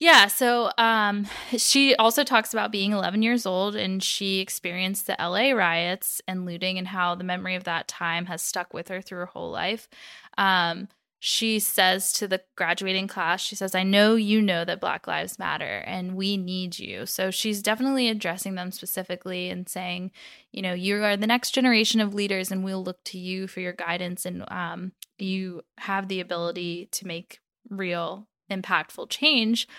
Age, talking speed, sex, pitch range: 10-29, 185 wpm, female, 185-215 Hz